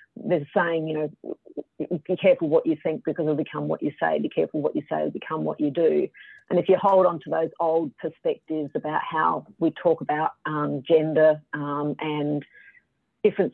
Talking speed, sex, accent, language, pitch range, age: 195 wpm, female, Australian, English, 155-190 Hz, 40-59